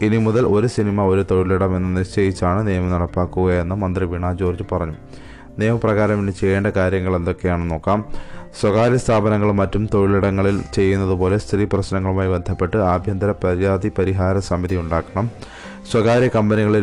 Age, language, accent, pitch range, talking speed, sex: 20-39, Malayalam, native, 90-105 Hz, 120 wpm, male